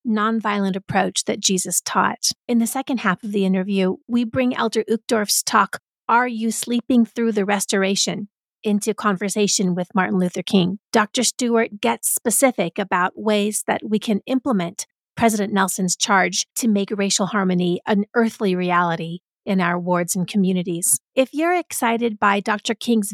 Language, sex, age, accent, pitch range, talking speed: English, female, 40-59, American, 195-235 Hz, 155 wpm